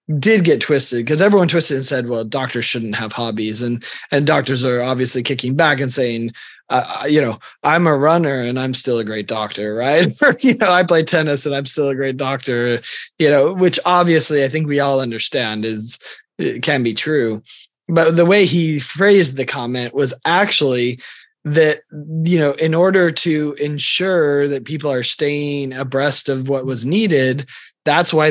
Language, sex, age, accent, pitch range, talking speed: English, male, 20-39, American, 130-160 Hz, 185 wpm